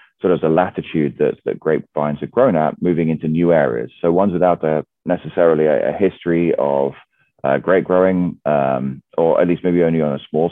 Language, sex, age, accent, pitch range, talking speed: English, male, 30-49, British, 75-90 Hz, 215 wpm